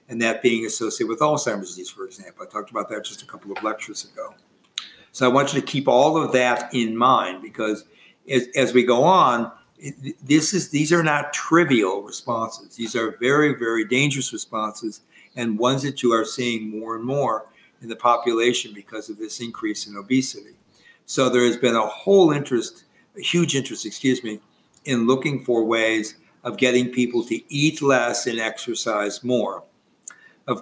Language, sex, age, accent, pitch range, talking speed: English, male, 50-69, American, 115-140 Hz, 180 wpm